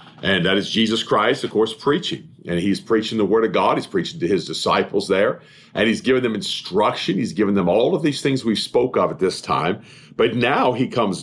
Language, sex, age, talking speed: English, male, 50-69, 230 wpm